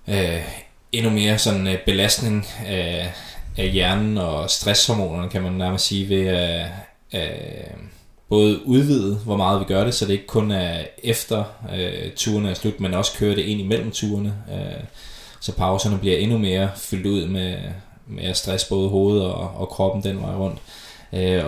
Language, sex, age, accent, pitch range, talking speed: Danish, male, 20-39, native, 90-105 Hz, 175 wpm